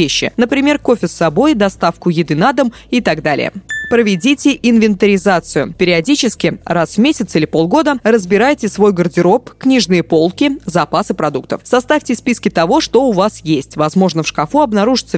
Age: 20-39